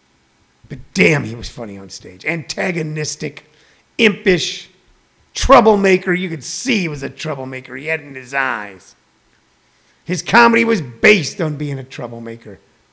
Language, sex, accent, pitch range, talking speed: English, male, American, 155-220 Hz, 145 wpm